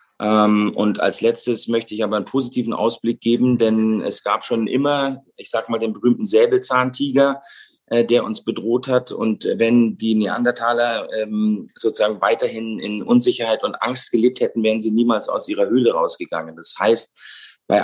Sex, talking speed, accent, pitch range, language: male, 170 wpm, German, 110-125 Hz, German